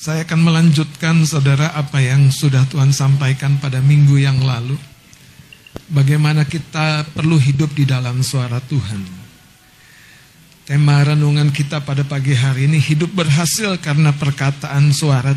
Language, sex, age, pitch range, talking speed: Indonesian, male, 50-69, 140-175 Hz, 130 wpm